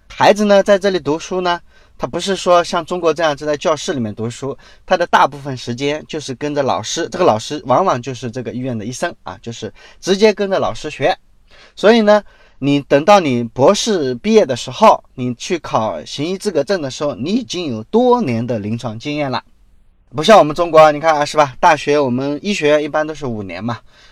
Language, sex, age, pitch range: Chinese, male, 20-39, 125-180 Hz